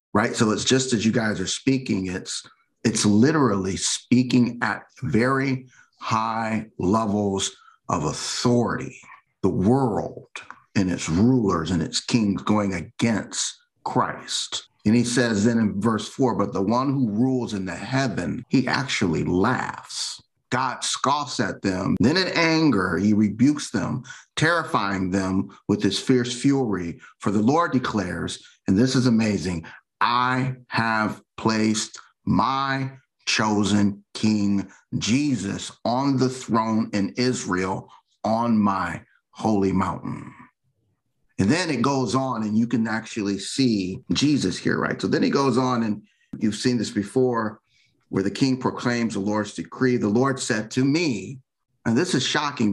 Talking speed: 145 wpm